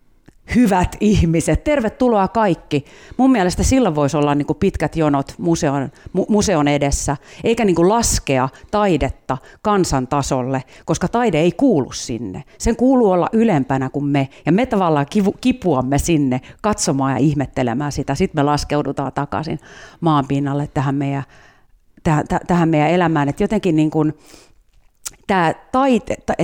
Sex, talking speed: female, 120 wpm